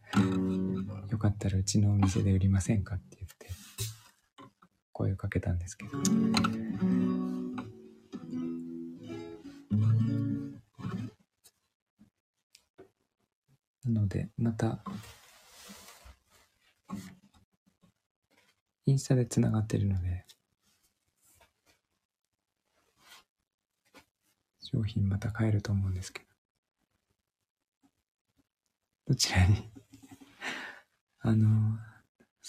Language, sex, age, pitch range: Japanese, male, 40-59, 95-120 Hz